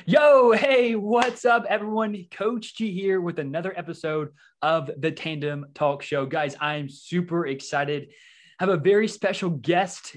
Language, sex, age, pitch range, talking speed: English, male, 20-39, 145-180 Hz, 160 wpm